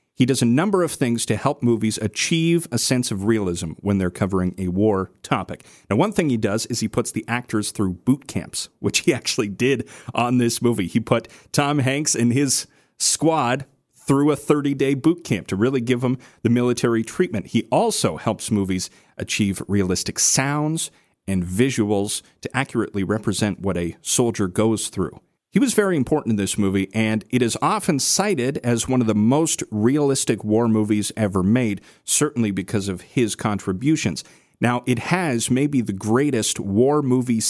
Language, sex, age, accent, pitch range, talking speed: English, male, 40-59, American, 105-135 Hz, 180 wpm